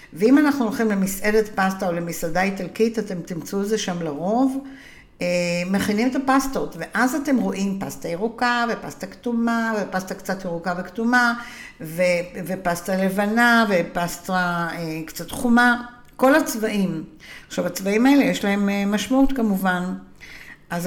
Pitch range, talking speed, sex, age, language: 175-230 Hz, 125 wpm, female, 60-79, Hebrew